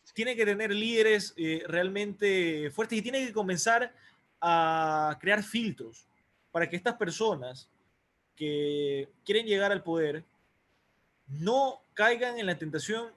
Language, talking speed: Spanish, 130 wpm